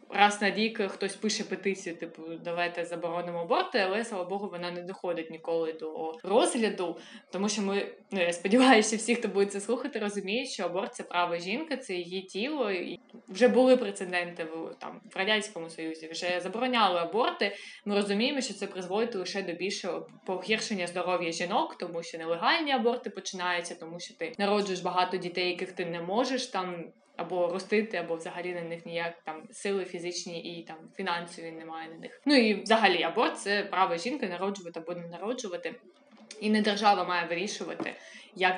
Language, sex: Ukrainian, female